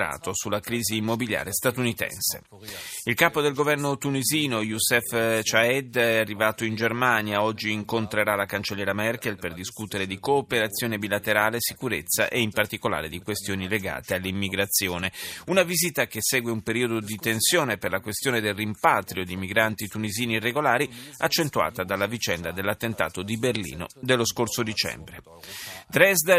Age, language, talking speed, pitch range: 30-49, Italian, 135 wpm, 105-140 Hz